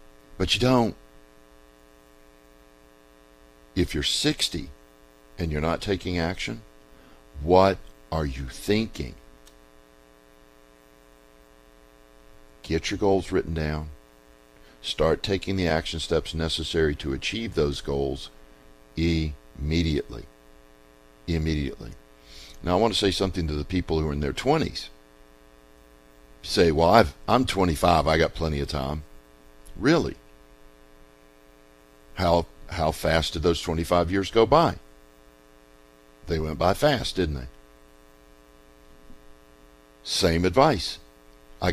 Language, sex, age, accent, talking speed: English, male, 50-69, American, 110 wpm